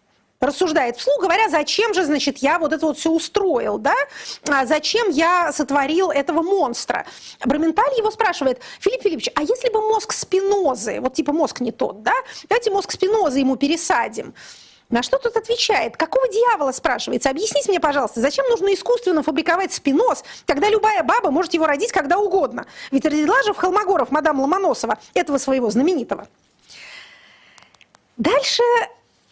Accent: native